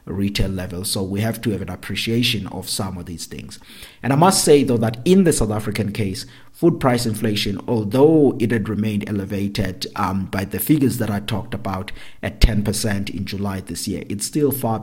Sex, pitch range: male, 95-120 Hz